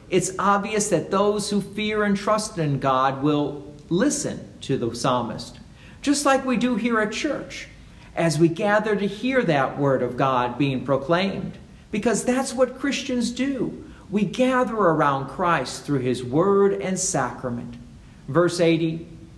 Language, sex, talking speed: English, male, 150 wpm